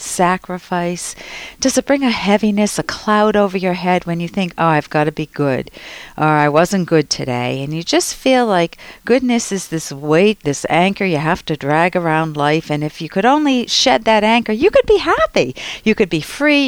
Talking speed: 210 wpm